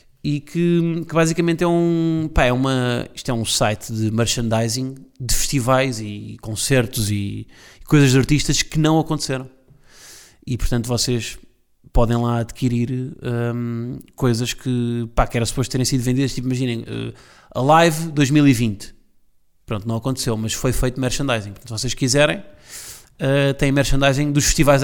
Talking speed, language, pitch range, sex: 155 wpm, Portuguese, 120-150 Hz, male